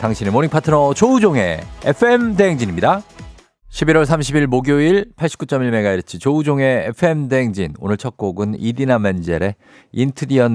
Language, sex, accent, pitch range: Korean, male, native, 95-130 Hz